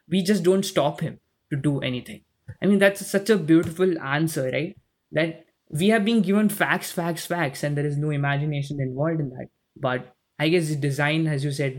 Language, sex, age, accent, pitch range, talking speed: English, male, 20-39, Indian, 140-190 Hz, 200 wpm